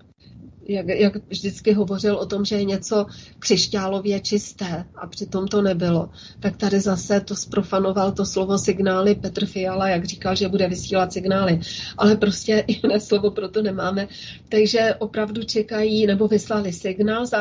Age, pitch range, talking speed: 30-49, 195-230 Hz, 150 wpm